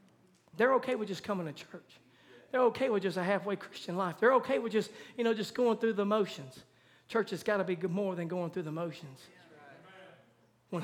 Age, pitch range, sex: 40-59, 155-200 Hz, male